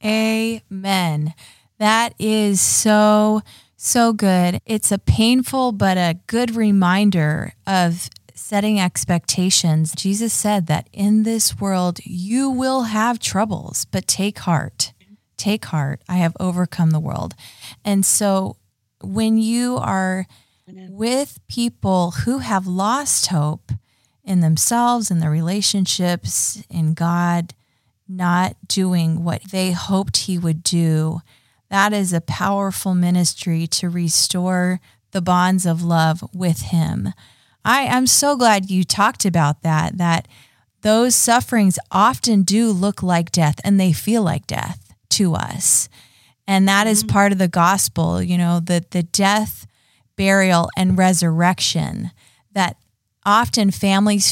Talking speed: 130 wpm